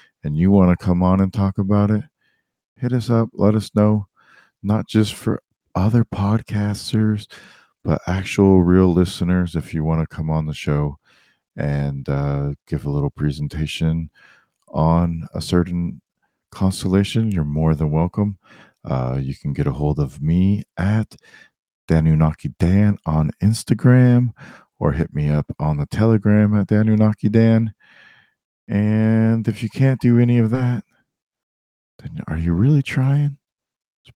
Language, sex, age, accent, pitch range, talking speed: English, male, 40-59, American, 80-110 Hz, 150 wpm